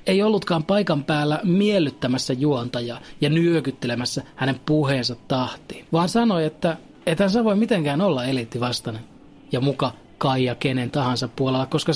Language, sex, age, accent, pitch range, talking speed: Finnish, male, 30-49, native, 125-160 Hz, 135 wpm